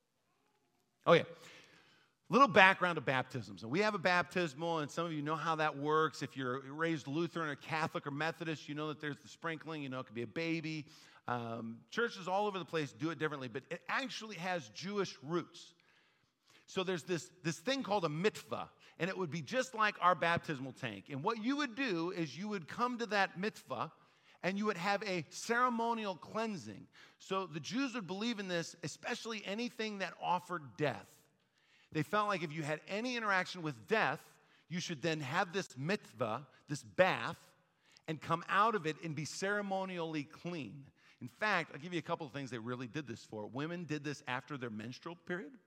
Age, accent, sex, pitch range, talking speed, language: 50-69, American, male, 145-190 Hz, 195 wpm, English